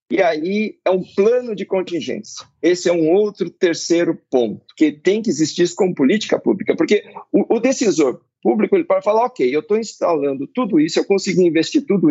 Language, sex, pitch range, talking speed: Portuguese, male, 165-250 Hz, 185 wpm